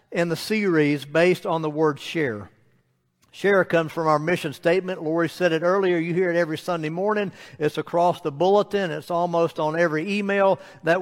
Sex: male